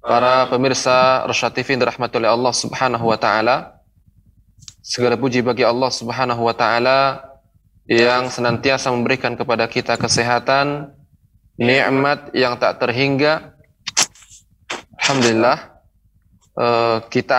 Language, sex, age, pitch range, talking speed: Indonesian, male, 20-39, 110-130 Hz, 95 wpm